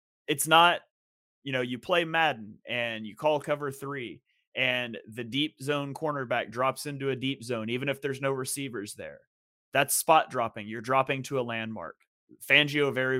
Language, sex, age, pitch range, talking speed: English, male, 30-49, 120-150 Hz, 175 wpm